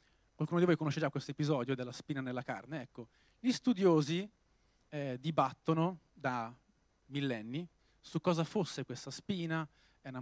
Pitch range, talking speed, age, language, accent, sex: 130-185 Hz, 145 wpm, 30-49, Italian, native, male